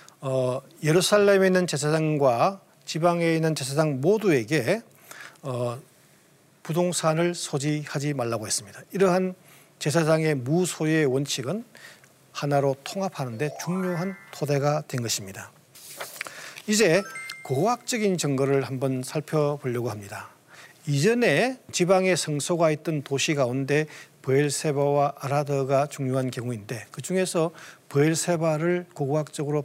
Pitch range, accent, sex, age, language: 140-185 Hz, native, male, 40-59, Korean